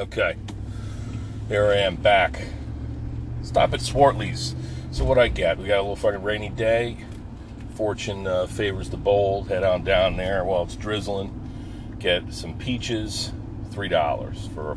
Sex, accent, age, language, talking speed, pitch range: male, American, 40-59, English, 150 wpm, 95-110 Hz